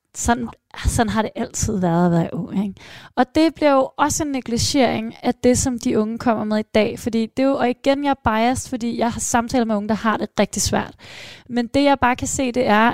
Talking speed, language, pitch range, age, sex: 245 wpm, Danish, 220-265 Hz, 20-39, female